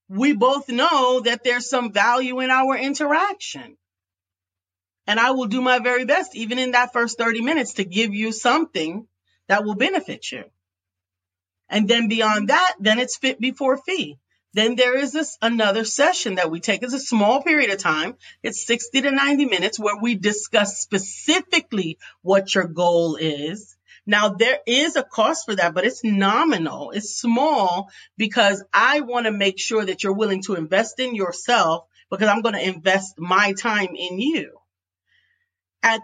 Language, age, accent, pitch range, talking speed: English, 40-59, American, 190-255 Hz, 170 wpm